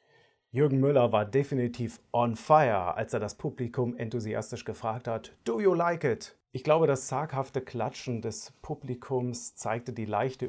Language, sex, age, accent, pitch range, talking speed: German, male, 40-59, German, 105-130 Hz, 155 wpm